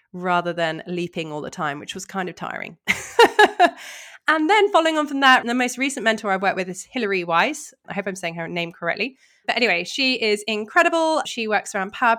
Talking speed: 210 wpm